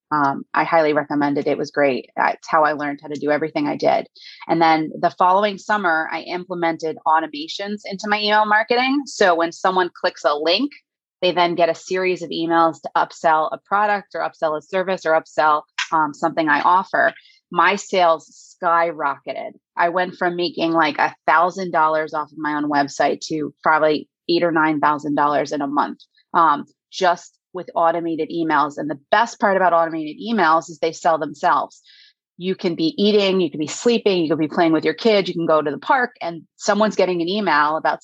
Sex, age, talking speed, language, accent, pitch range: female, 30-49, 195 wpm, English, American, 155-195 Hz